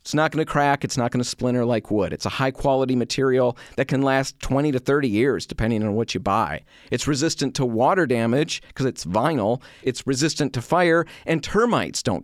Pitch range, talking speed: 120-150 Hz, 210 wpm